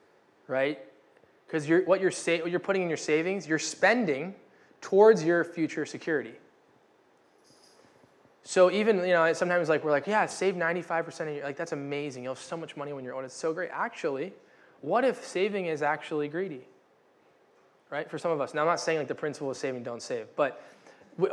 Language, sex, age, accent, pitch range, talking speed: English, male, 20-39, American, 150-190 Hz, 195 wpm